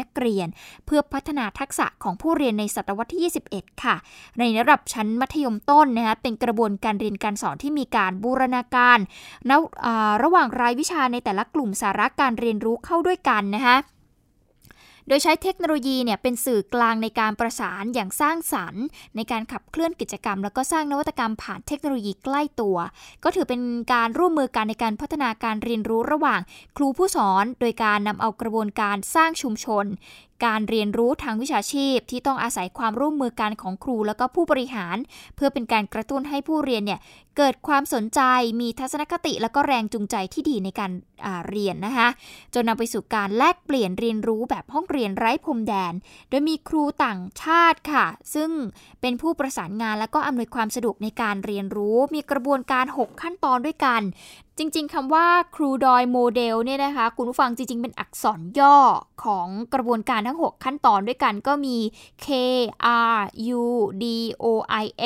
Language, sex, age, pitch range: Thai, female, 10-29, 220-285 Hz